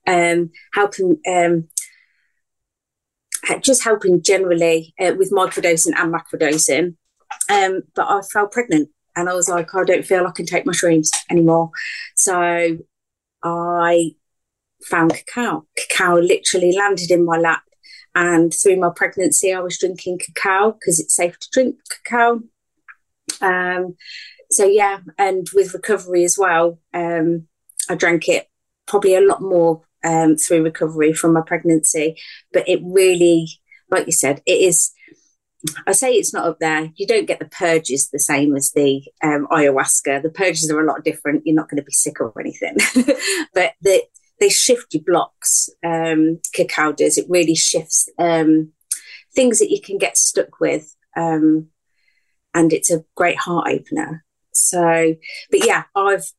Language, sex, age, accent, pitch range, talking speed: English, female, 30-49, British, 160-195 Hz, 150 wpm